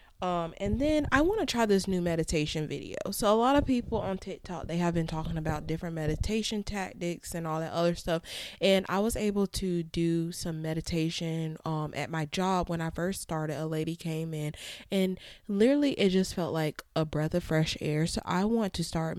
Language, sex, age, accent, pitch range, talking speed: English, female, 20-39, American, 160-195 Hz, 210 wpm